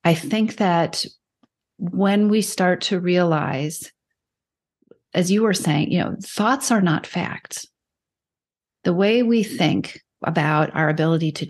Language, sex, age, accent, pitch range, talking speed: English, female, 40-59, American, 165-220 Hz, 135 wpm